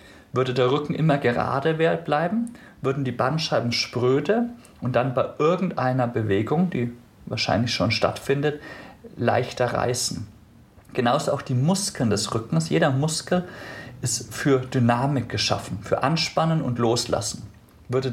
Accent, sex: German, male